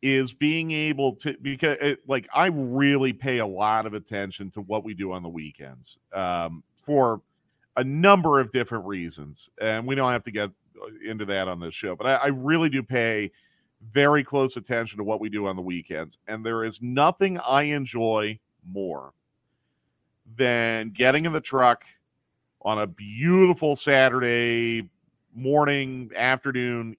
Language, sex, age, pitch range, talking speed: English, male, 40-59, 105-135 Hz, 160 wpm